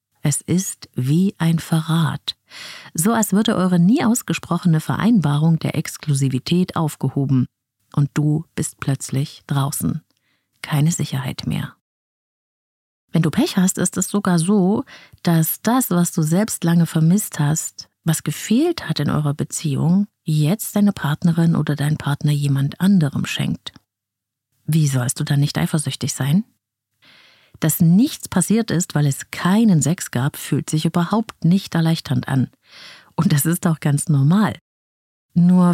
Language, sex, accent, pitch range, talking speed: German, female, German, 140-185 Hz, 140 wpm